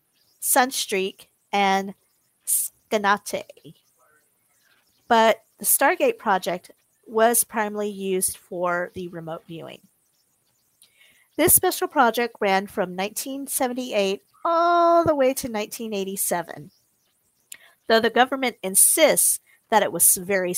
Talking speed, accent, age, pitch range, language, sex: 95 wpm, American, 40-59, 195-255 Hz, English, female